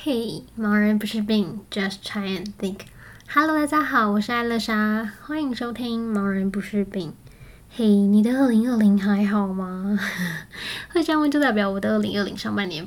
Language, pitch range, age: Chinese, 205-230 Hz, 10-29